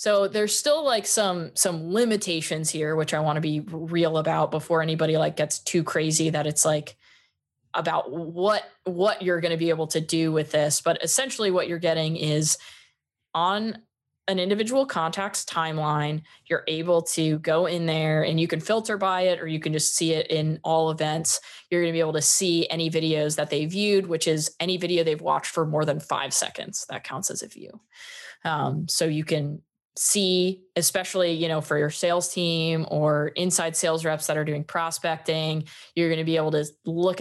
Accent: American